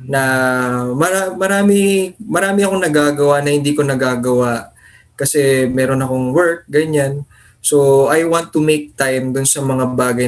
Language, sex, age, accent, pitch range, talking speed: English, male, 20-39, Filipino, 125-155 Hz, 140 wpm